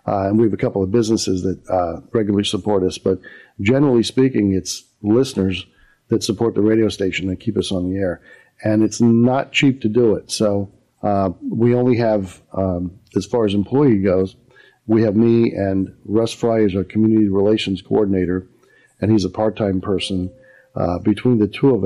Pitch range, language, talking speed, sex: 95-115 Hz, English, 185 wpm, male